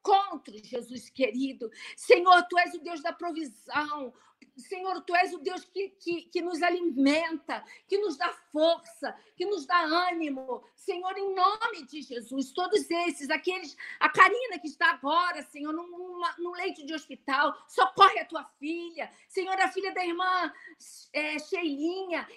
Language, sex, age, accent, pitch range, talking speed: Portuguese, female, 50-69, Brazilian, 315-385 Hz, 155 wpm